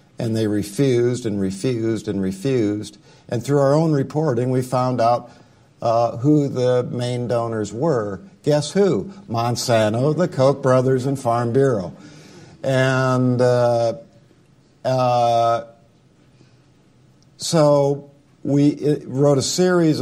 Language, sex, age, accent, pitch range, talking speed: English, male, 50-69, American, 110-140 Hz, 115 wpm